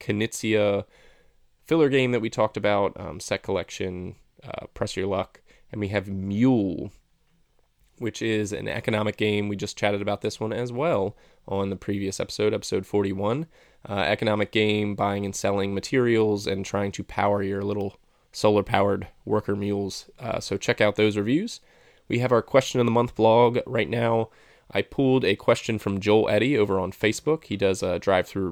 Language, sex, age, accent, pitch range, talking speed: English, male, 20-39, American, 100-115 Hz, 180 wpm